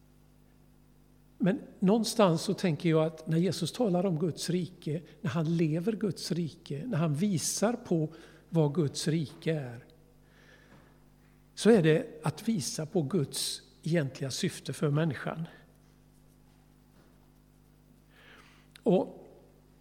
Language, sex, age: Swedish, male, 60-79